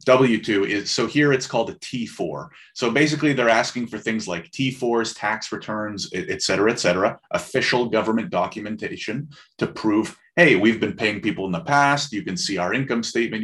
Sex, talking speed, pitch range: male, 185 wpm, 100-125 Hz